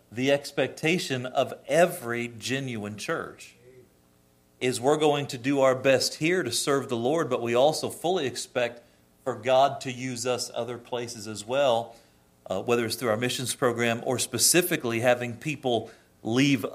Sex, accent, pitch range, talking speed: male, American, 115-140 Hz, 160 wpm